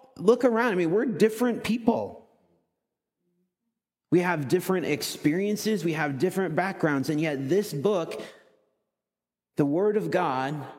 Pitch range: 140-180 Hz